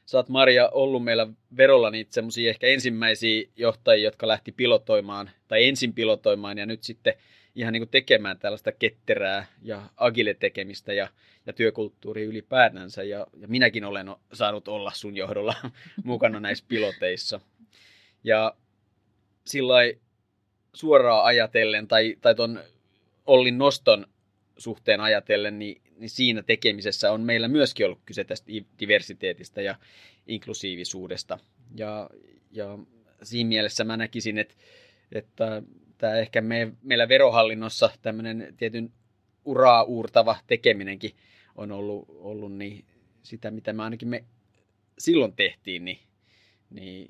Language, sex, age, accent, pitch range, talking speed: Finnish, male, 30-49, native, 105-120 Hz, 120 wpm